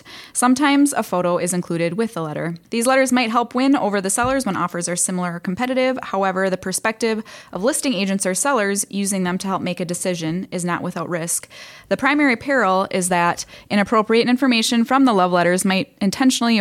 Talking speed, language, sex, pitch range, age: 195 wpm, English, female, 180-230 Hz, 10-29